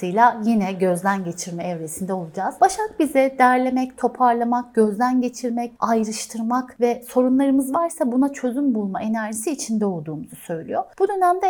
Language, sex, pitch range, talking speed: Turkish, female, 190-275 Hz, 125 wpm